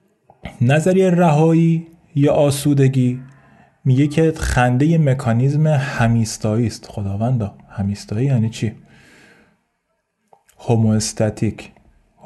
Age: 30-49